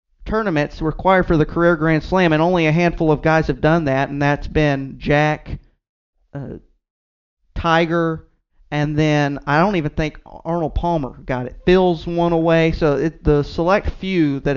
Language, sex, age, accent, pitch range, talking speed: English, male, 30-49, American, 145-175 Hz, 170 wpm